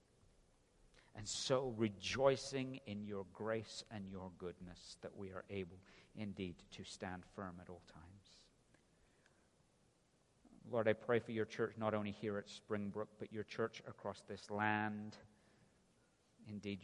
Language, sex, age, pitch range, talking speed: English, male, 50-69, 95-110 Hz, 135 wpm